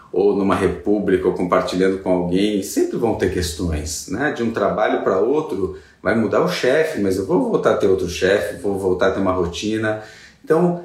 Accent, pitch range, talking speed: Brazilian, 95-140 Hz, 200 wpm